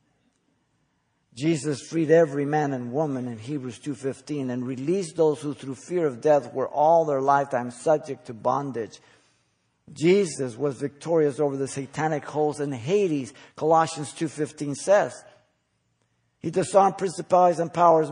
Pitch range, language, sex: 130-165 Hz, English, male